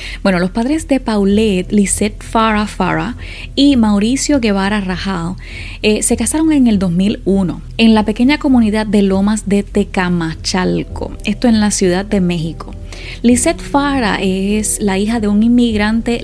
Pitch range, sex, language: 185-245 Hz, female, Spanish